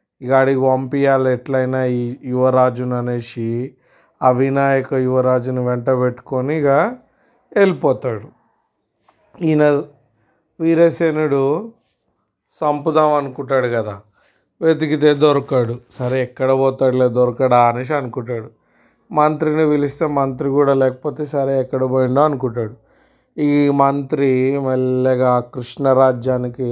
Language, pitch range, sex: Telugu, 130-150 Hz, male